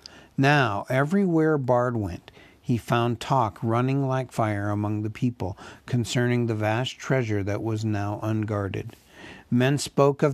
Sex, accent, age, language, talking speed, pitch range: male, American, 60-79, English, 140 wpm, 110-135 Hz